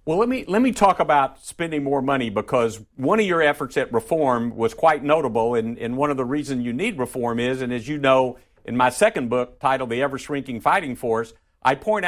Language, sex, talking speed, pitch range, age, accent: English, male, 225 wpm, 125-150 Hz, 50-69, American